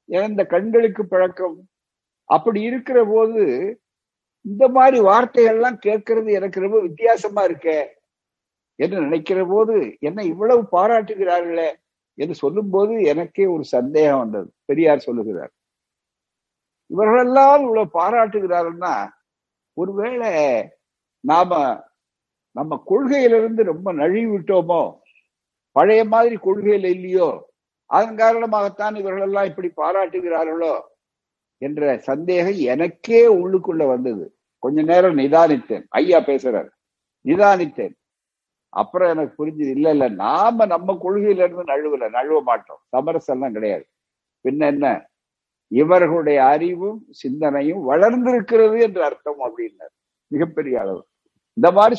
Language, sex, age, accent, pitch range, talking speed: Tamil, male, 60-79, native, 170-230 Hz, 95 wpm